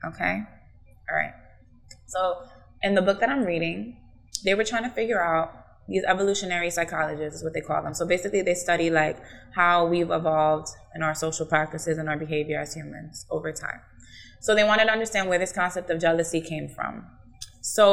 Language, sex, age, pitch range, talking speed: English, female, 20-39, 155-185 Hz, 185 wpm